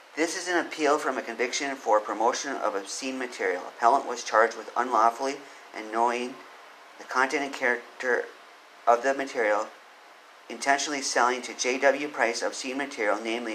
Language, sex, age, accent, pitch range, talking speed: English, male, 40-59, American, 115-140 Hz, 150 wpm